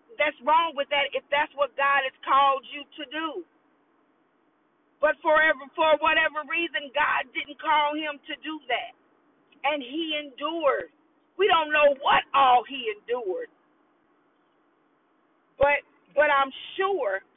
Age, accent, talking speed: 40-59, American, 130 wpm